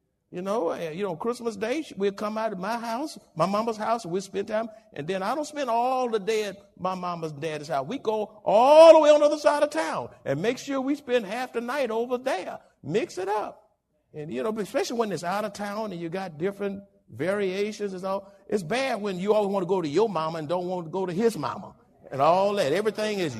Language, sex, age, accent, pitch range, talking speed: English, male, 60-79, American, 195-300 Hz, 250 wpm